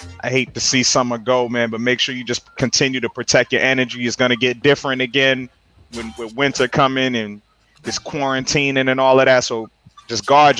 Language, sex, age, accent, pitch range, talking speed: English, male, 30-49, American, 120-150 Hz, 215 wpm